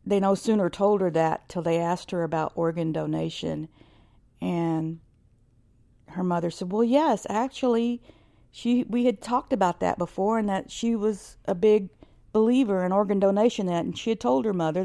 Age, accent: 50-69, American